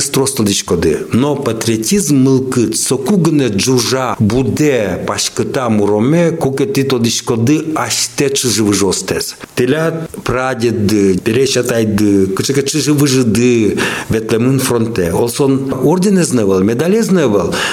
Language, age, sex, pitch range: Russian, 60-79, male, 105-145 Hz